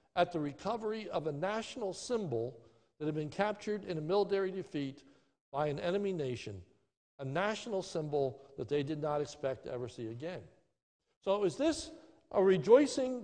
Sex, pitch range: male, 150-220 Hz